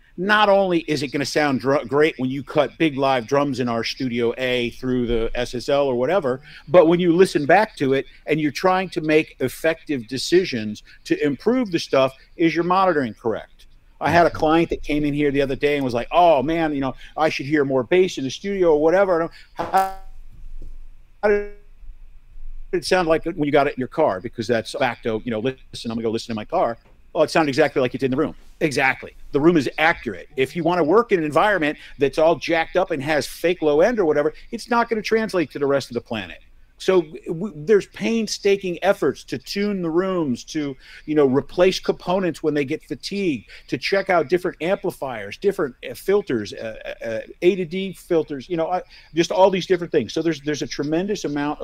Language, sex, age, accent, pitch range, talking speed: English, male, 50-69, American, 130-180 Hz, 220 wpm